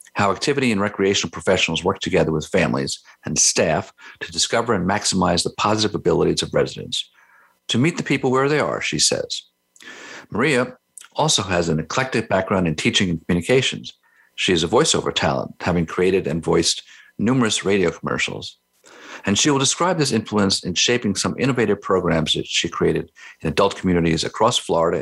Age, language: 50-69, English